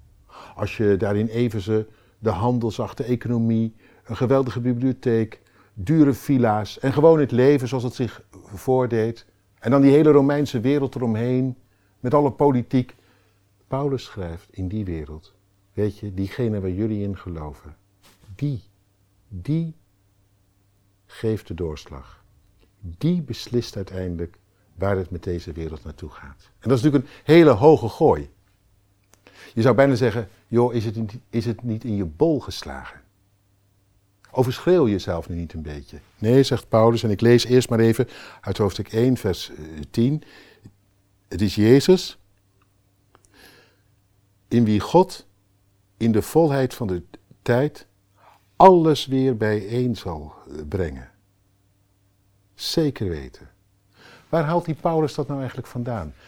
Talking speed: 135 wpm